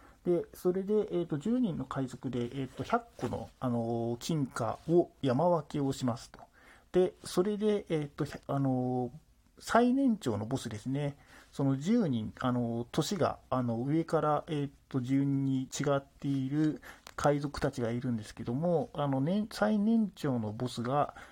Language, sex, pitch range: Japanese, male, 125-185 Hz